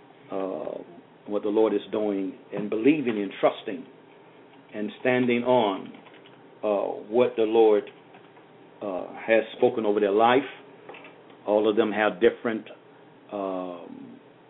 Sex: male